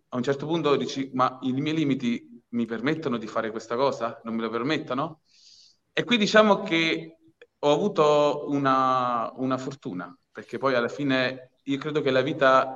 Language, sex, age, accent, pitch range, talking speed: Italian, male, 30-49, native, 125-160 Hz, 175 wpm